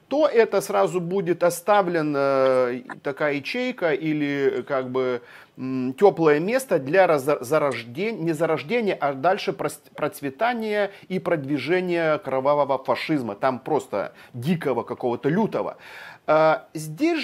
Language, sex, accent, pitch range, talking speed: Russian, male, native, 140-210 Hz, 100 wpm